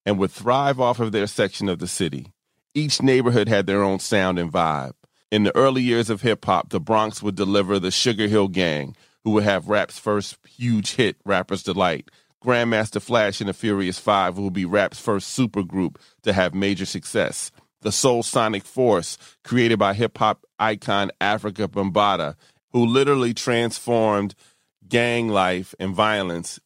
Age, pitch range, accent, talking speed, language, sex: 30-49, 100-115 Hz, American, 165 wpm, English, male